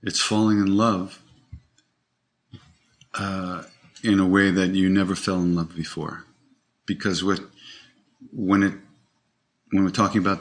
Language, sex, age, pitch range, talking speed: English, male, 50-69, 90-110 Hz, 120 wpm